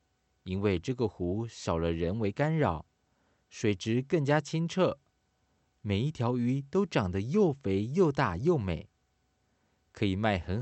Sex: male